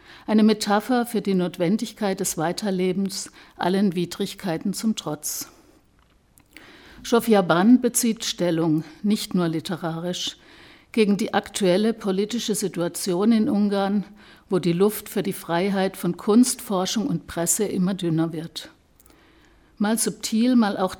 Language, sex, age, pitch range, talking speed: German, female, 60-79, 175-215 Hz, 125 wpm